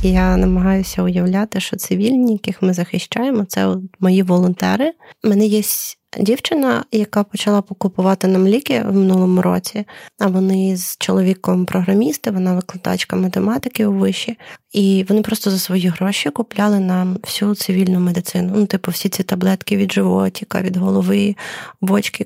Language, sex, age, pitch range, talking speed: Ukrainian, female, 30-49, 185-210 Hz, 145 wpm